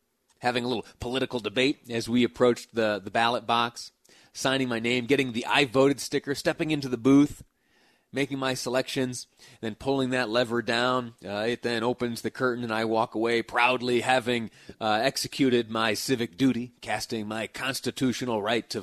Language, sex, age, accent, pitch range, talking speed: English, male, 30-49, American, 120-160 Hz, 170 wpm